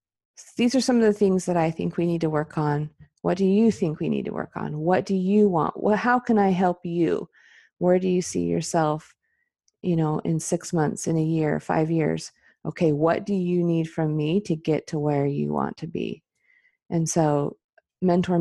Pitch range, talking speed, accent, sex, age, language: 150-180 Hz, 210 wpm, American, female, 30-49, English